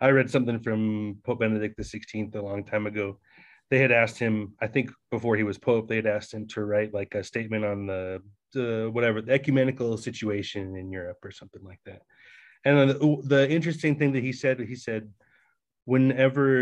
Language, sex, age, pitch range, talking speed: English, male, 30-49, 105-130 Hz, 195 wpm